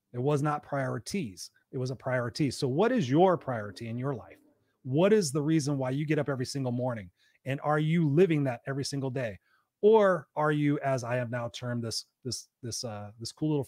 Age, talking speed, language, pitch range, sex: 30-49, 220 wpm, English, 125-160 Hz, male